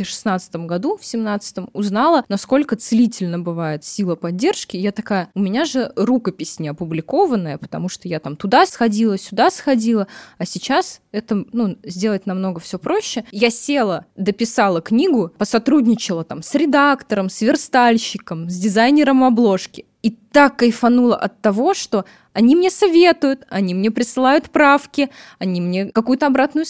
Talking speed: 145 wpm